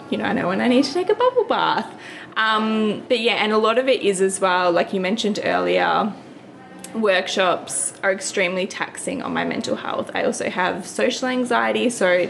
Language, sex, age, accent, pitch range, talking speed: English, female, 20-39, Australian, 180-235 Hz, 205 wpm